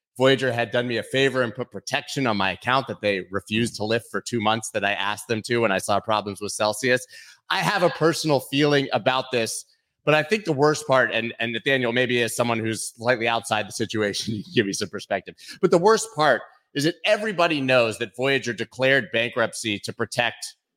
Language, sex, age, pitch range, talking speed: English, male, 30-49, 110-135 Hz, 215 wpm